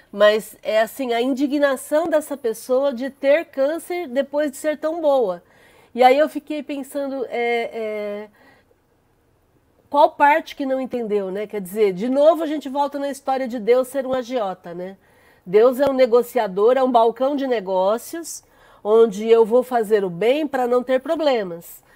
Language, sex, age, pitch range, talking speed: Portuguese, female, 40-59, 205-280 Hz, 165 wpm